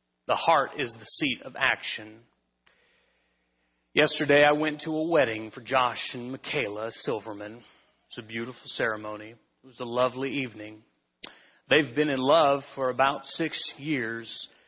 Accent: American